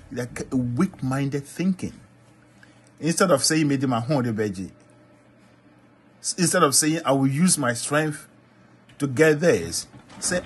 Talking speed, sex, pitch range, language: 105 wpm, male, 105-145 Hz, English